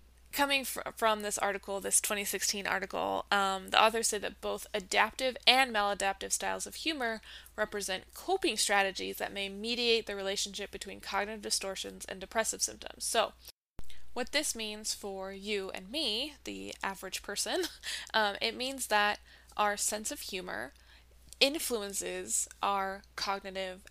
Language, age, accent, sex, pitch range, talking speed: English, 20-39, American, female, 190-225 Hz, 140 wpm